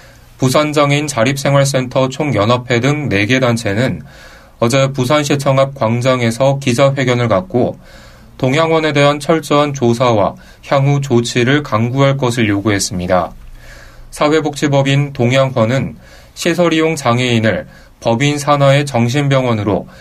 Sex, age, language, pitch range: male, 30-49, Korean, 115-140 Hz